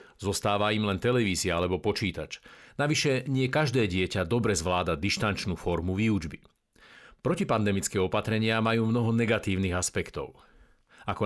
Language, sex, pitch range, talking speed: Slovak, male, 100-120 Hz, 115 wpm